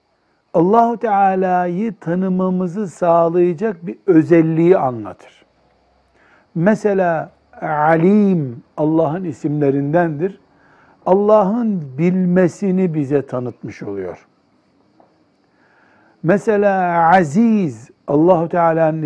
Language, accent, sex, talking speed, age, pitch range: Turkish, native, male, 65 wpm, 60-79, 155-205 Hz